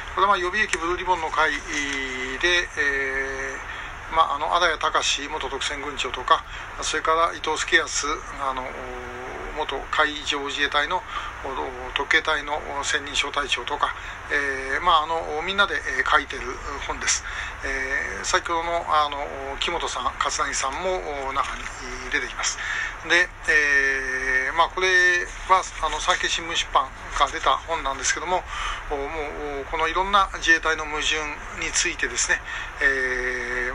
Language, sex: Japanese, male